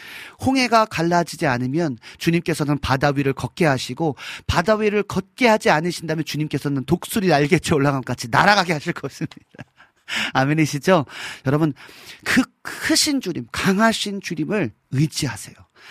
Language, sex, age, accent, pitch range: Korean, male, 40-59, native, 120-170 Hz